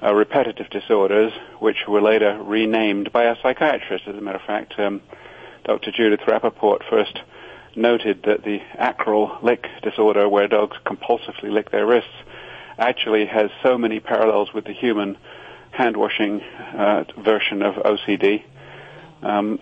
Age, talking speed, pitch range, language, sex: 40-59, 140 wpm, 105-125 Hz, English, male